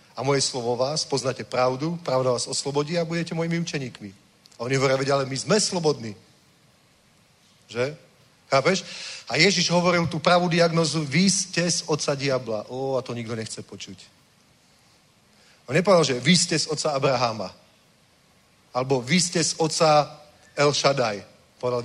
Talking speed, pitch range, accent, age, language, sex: 150 wpm, 130-170 Hz, native, 40-59, Czech, male